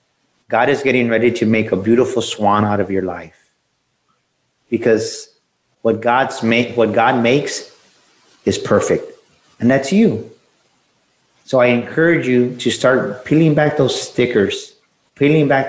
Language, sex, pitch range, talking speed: English, male, 110-130 Hz, 140 wpm